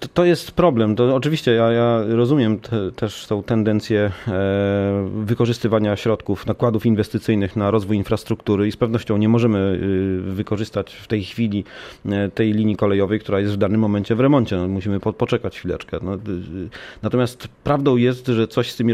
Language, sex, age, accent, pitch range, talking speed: Polish, male, 30-49, native, 100-120 Hz, 160 wpm